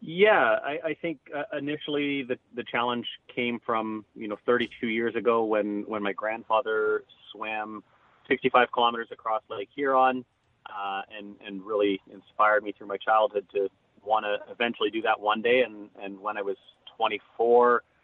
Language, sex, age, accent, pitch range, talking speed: English, male, 30-49, American, 105-125 Hz, 165 wpm